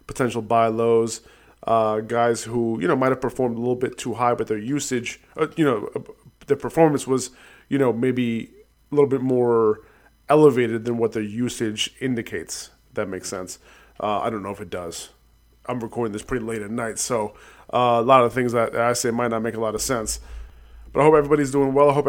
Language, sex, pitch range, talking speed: English, male, 115-135 Hz, 215 wpm